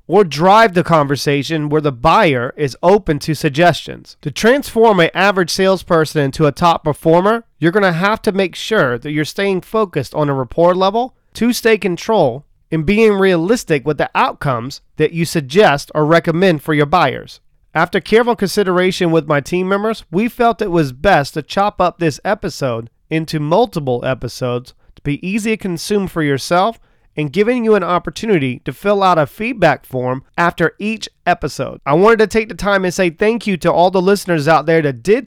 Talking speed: 185 wpm